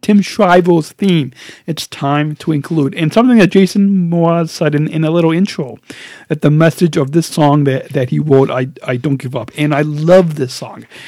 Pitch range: 145-185 Hz